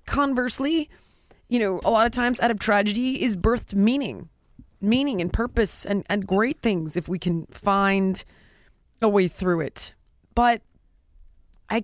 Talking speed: 150 wpm